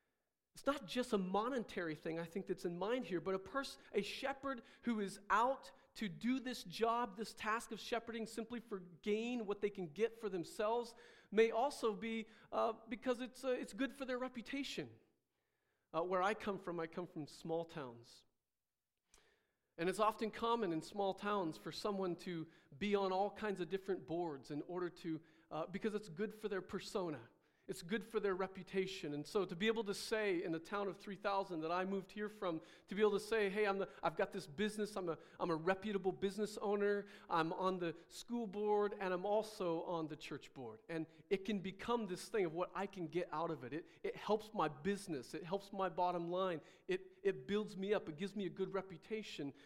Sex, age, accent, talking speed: male, 40-59, American, 210 wpm